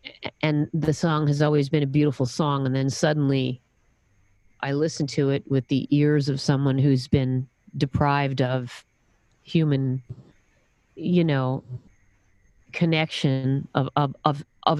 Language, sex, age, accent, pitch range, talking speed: English, female, 40-59, American, 130-155 Hz, 130 wpm